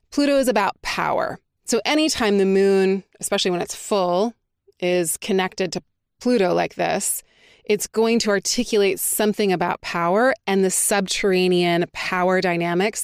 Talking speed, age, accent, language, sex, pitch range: 140 wpm, 20-39, American, English, female, 180-215 Hz